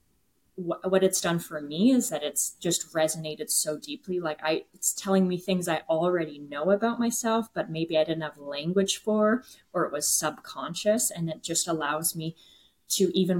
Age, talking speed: 20-39, 185 wpm